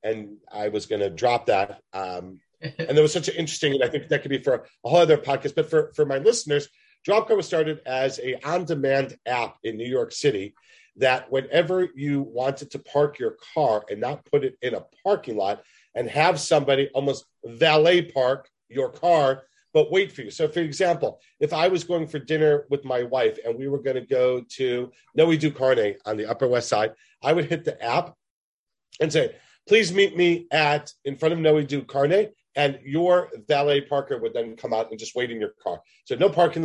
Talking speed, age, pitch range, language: 215 wpm, 40-59, 130-175 Hz, English